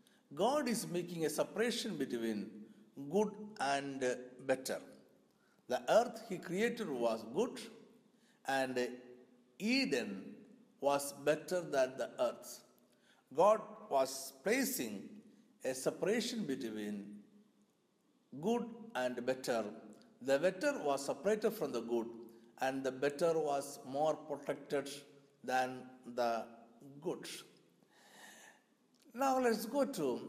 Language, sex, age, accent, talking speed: Malayalam, male, 60-79, native, 100 wpm